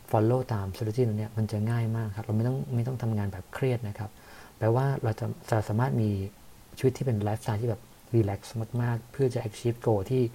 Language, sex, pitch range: Thai, male, 105-120 Hz